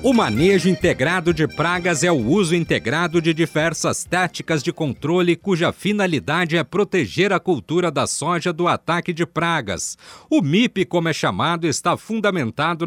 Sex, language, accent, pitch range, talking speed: male, Portuguese, Brazilian, 160-185 Hz, 155 wpm